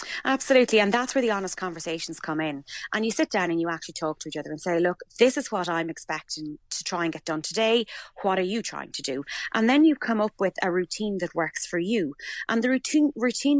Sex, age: female, 20-39